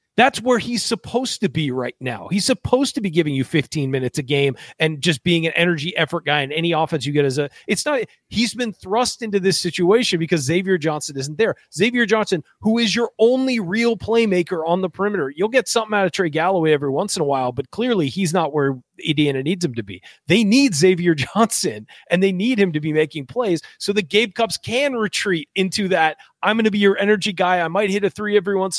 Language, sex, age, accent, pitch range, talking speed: English, male, 30-49, American, 160-215 Hz, 235 wpm